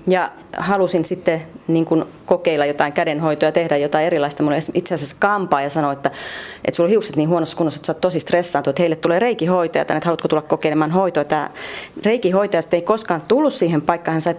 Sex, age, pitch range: female, 30-49, 150-185 Hz